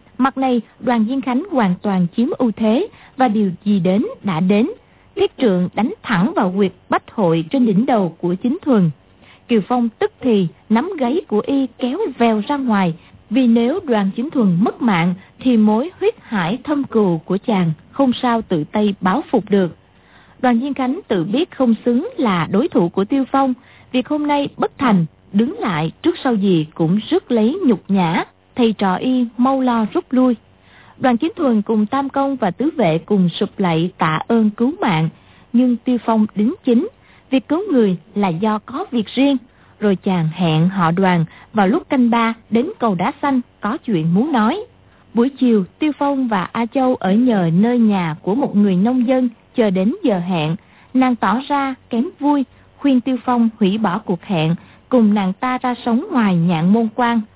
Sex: female